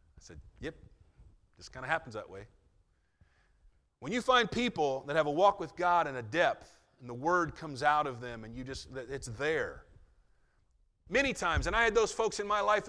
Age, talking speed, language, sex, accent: 30-49, 200 wpm, English, male, American